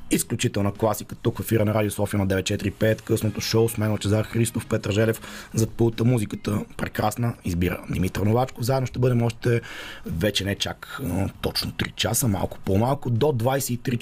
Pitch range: 100-120 Hz